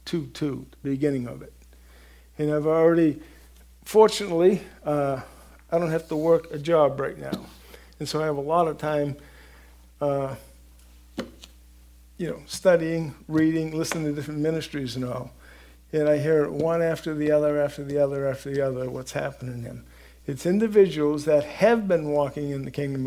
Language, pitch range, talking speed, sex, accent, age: English, 135-175 Hz, 170 wpm, male, American, 50-69